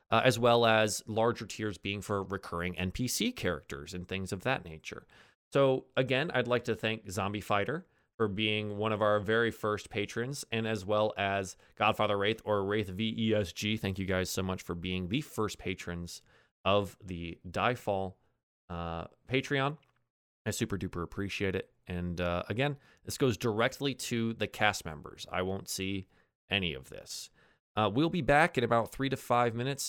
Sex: male